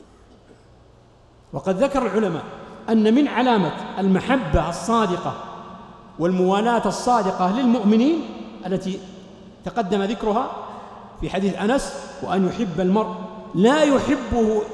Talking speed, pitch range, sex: 90 wpm, 185-250 Hz, male